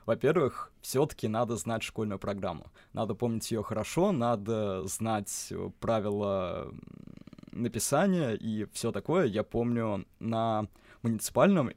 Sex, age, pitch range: male, 20-39, 105-120 Hz